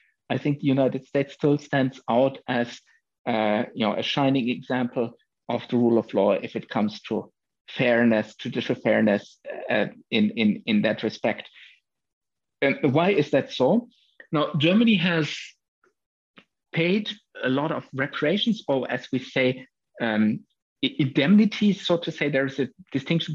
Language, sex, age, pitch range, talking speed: English, male, 50-69, 125-160 Hz, 150 wpm